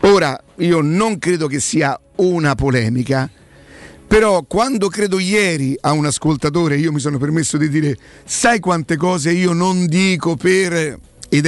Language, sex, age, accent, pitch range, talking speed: Italian, male, 50-69, native, 130-185 Hz, 150 wpm